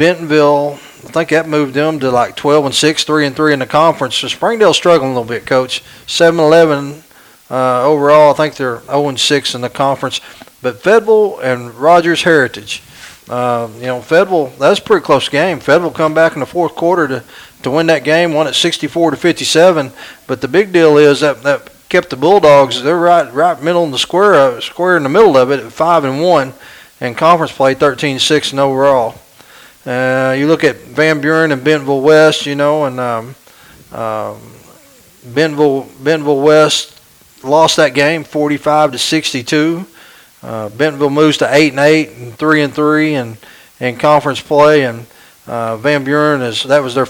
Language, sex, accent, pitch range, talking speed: English, male, American, 130-155 Hz, 190 wpm